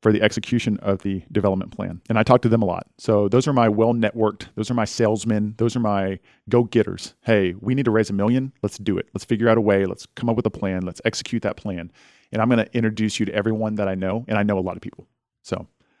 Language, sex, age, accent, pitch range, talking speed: English, male, 40-59, American, 105-120 Hz, 260 wpm